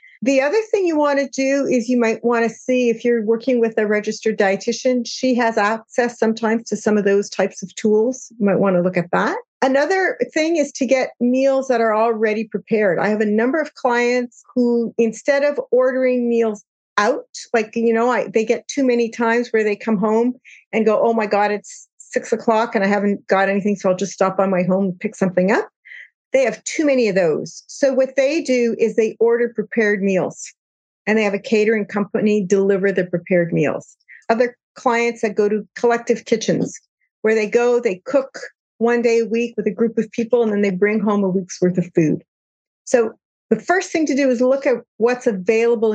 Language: English